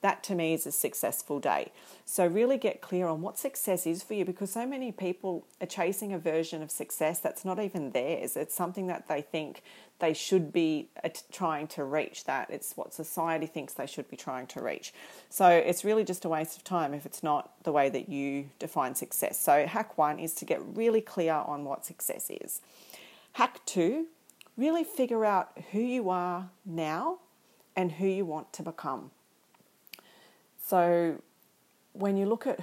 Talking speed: 190 wpm